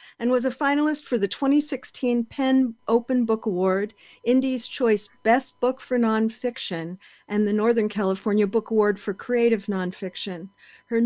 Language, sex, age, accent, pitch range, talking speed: English, female, 50-69, American, 190-230 Hz, 145 wpm